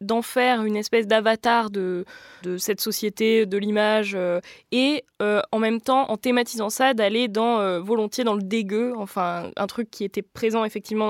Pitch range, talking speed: 195-230 Hz, 185 wpm